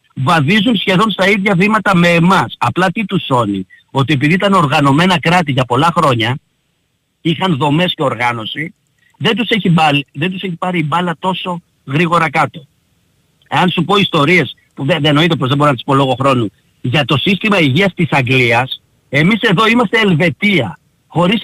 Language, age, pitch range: Greek, 50-69, 140-195 Hz